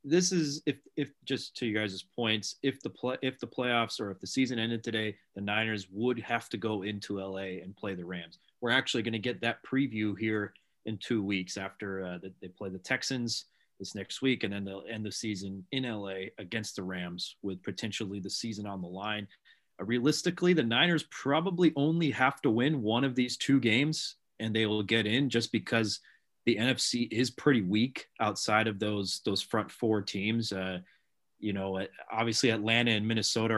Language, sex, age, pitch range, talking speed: English, male, 30-49, 100-120 Hz, 200 wpm